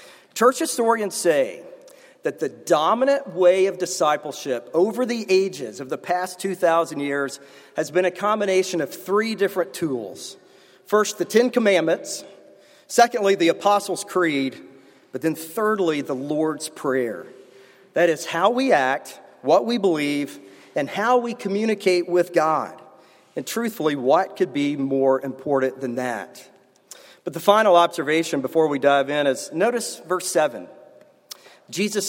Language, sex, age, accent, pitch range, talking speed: English, male, 40-59, American, 155-215 Hz, 140 wpm